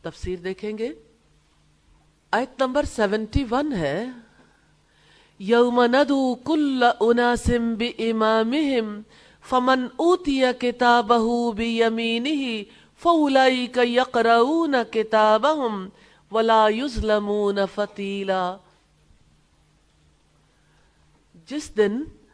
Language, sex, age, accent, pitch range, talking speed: English, female, 50-69, Indian, 185-245 Hz, 65 wpm